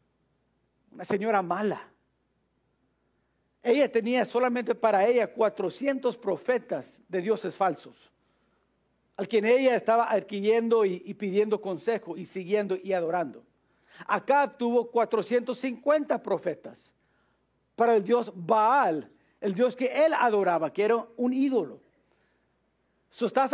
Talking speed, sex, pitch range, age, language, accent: 110 wpm, male, 200-245 Hz, 50-69, English, Mexican